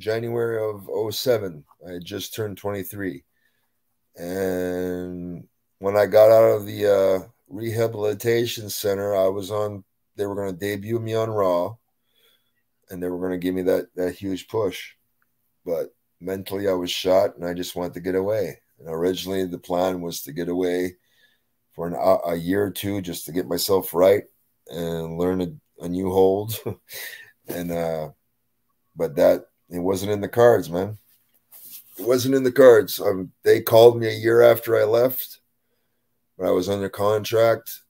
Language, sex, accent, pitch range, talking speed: English, male, American, 90-105 Hz, 165 wpm